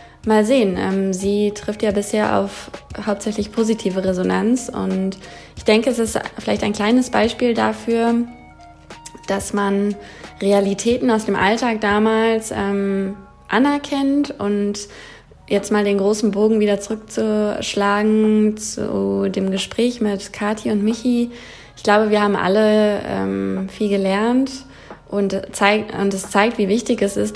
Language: German